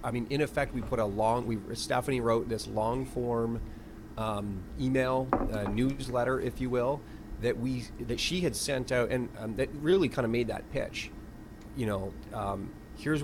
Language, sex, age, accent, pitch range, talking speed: English, male, 30-49, American, 110-125 Hz, 185 wpm